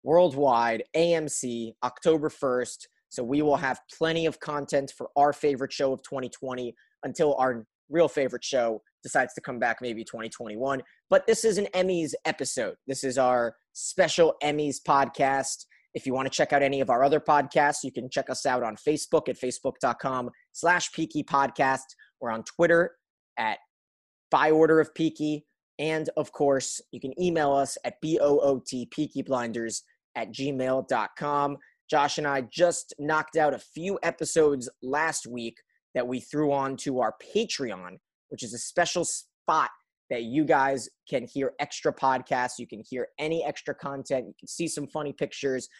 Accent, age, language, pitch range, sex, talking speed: American, 20-39, English, 130-155 Hz, male, 170 wpm